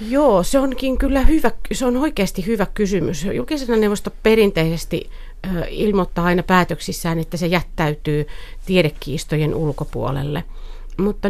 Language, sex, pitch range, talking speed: Finnish, female, 165-195 Hz, 115 wpm